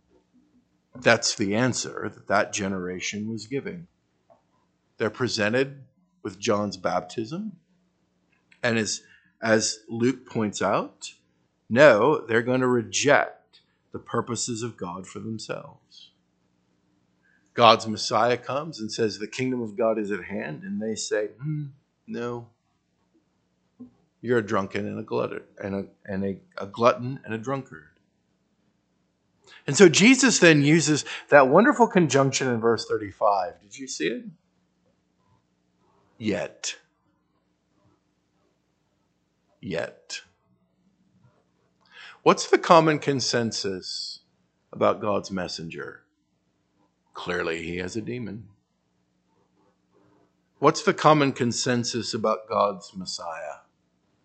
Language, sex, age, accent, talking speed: English, male, 50-69, American, 100 wpm